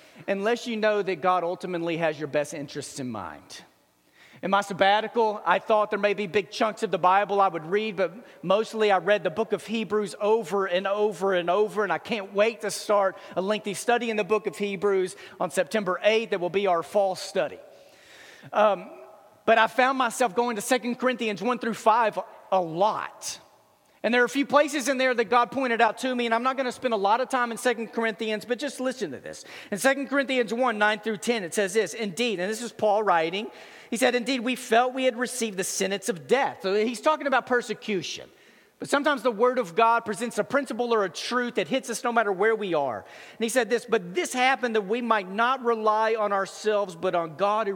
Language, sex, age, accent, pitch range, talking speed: English, male, 40-59, American, 190-240 Hz, 225 wpm